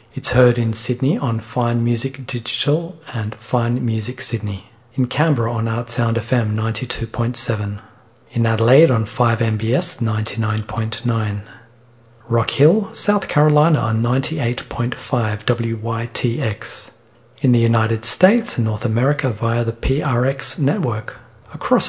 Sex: male